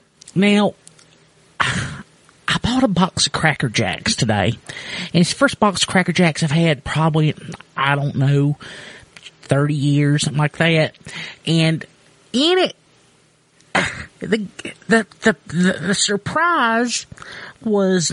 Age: 30-49